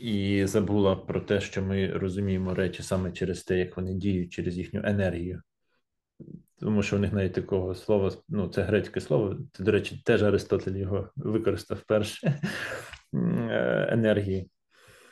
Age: 20-39